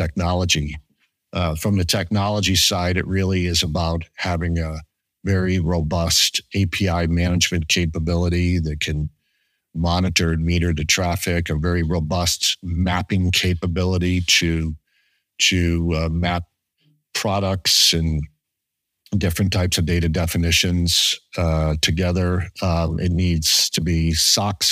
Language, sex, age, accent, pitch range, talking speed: English, male, 50-69, American, 85-95 Hz, 115 wpm